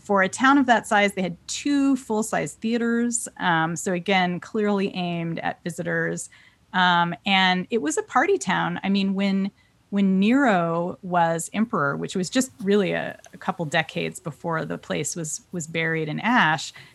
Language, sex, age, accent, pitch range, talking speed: English, female, 30-49, American, 170-230 Hz, 170 wpm